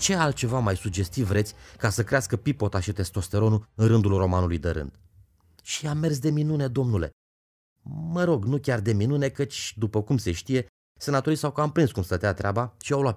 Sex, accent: male, native